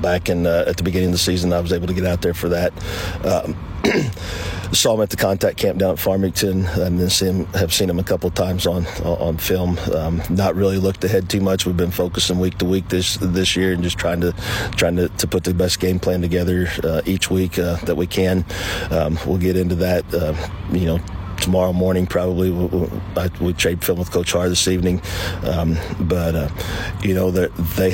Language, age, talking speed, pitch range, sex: English, 40-59, 220 wpm, 90-95 Hz, male